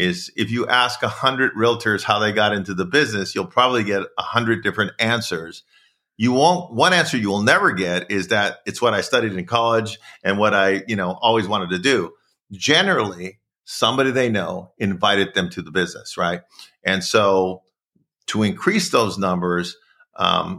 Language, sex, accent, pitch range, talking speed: English, male, American, 95-120 Hz, 180 wpm